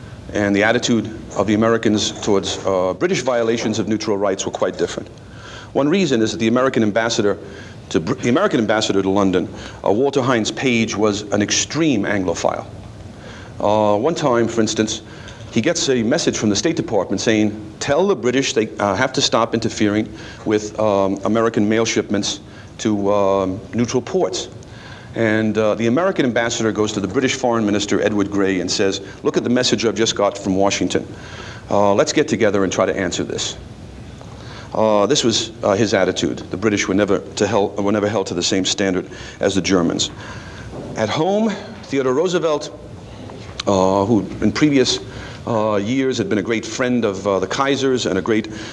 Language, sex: English, male